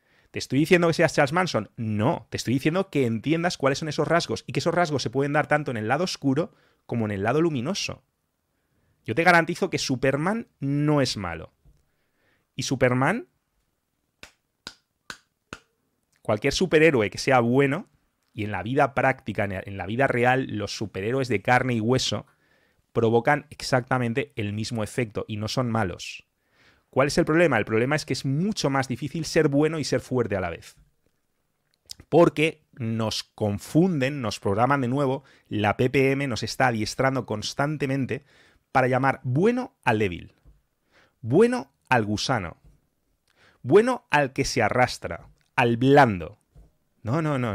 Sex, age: male, 30-49